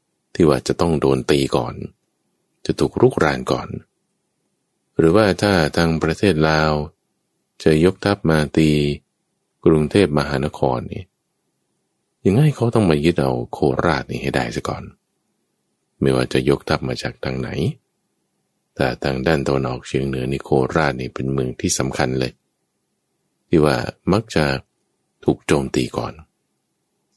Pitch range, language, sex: 65-80 Hz, English, male